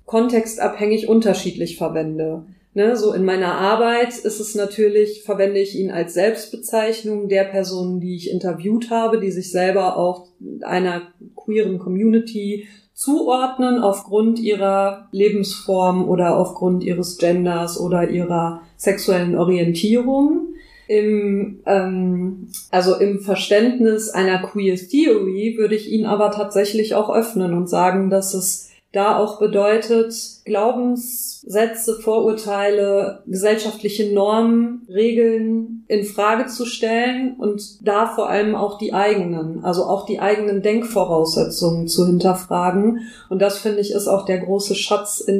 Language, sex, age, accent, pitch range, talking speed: German, female, 30-49, German, 190-220 Hz, 125 wpm